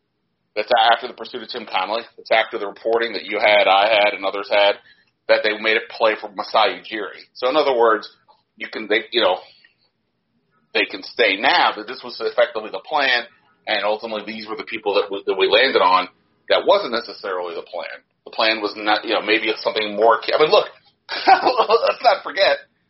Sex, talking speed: male, 210 wpm